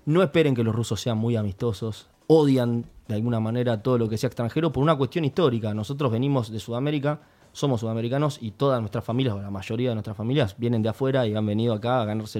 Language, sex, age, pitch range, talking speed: Spanish, male, 20-39, 110-140 Hz, 225 wpm